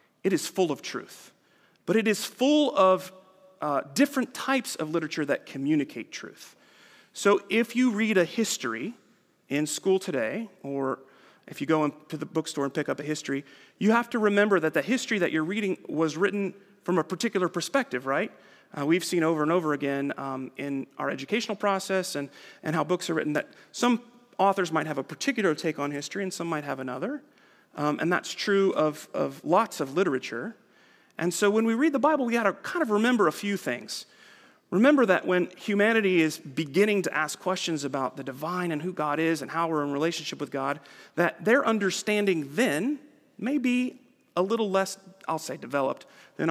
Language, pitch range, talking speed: English, 150-215 Hz, 195 wpm